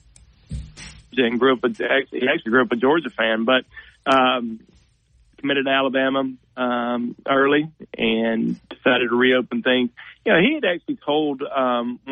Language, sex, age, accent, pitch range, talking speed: English, male, 40-59, American, 120-150 Hz, 150 wpm